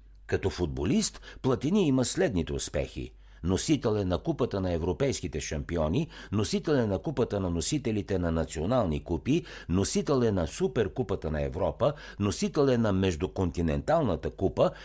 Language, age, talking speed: Bulgarian, 60-79, 120 wpm